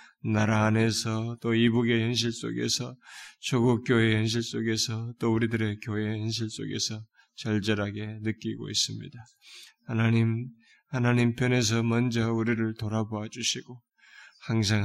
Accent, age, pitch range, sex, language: native, 20-39, 115-145 Hz, male, Korean